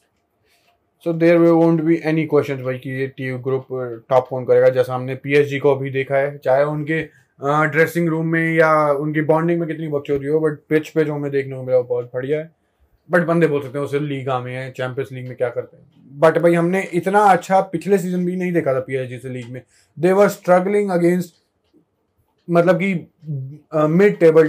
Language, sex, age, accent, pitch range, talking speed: Hindi, male, 20-39, native, 135-170 Hz, 220 wpm